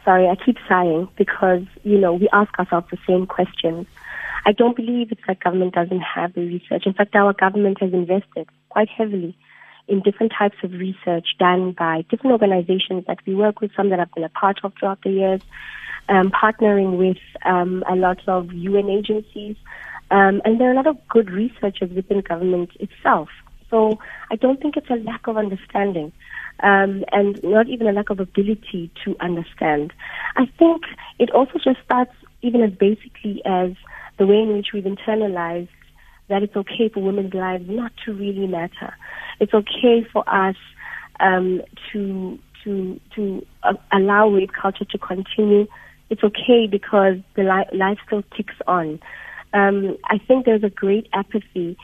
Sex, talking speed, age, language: female, 175 wpm, 20-39, English